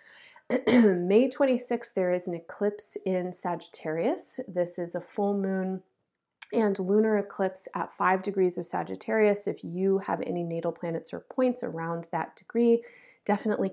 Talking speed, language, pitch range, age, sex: 145 wpm, English, 175-220 Hz, 30-49, female